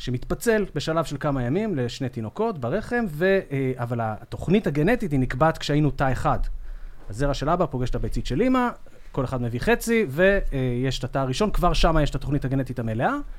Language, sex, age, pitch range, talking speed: Hebrew, male, 30-49, 130-185 Hz, 180 wpm